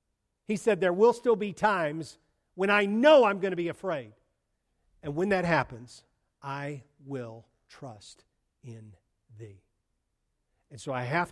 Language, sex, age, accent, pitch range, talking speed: English, male, 50-69, American, 115-145 Hz, 150 wpm